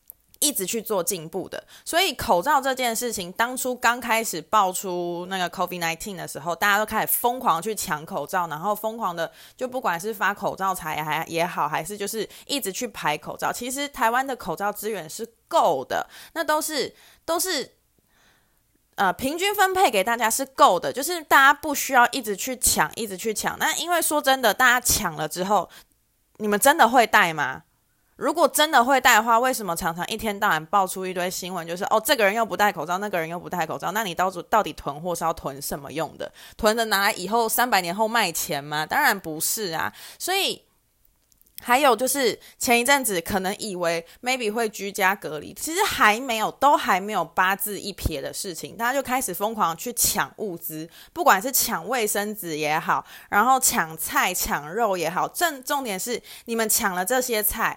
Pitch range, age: 180-255 Hz, 20-39